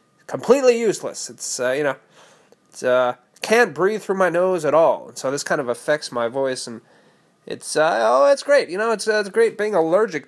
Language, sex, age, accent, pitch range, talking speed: English, male, 30-49, American, 135-215 Hz, 215 wpm